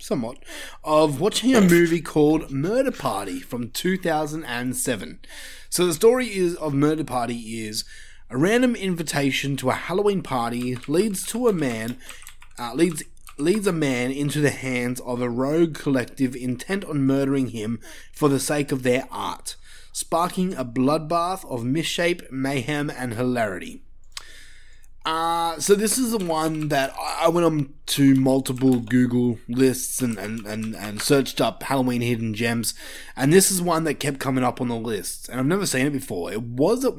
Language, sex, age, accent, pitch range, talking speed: English, male, 20-39, Australian, 125-170 Hz, 165 wpm